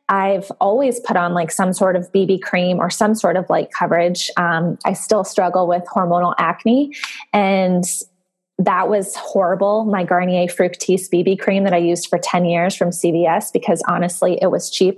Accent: American